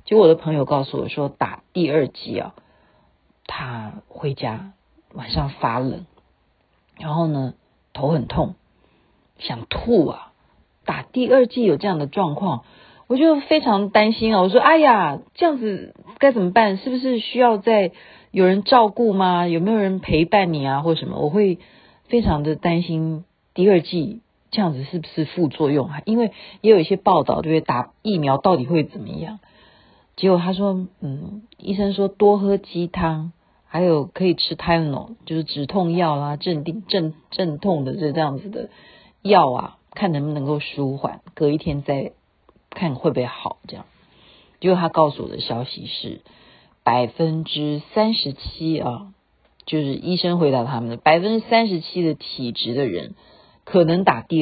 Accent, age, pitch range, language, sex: native, 40-59, 150-205 Hz, Chinese, female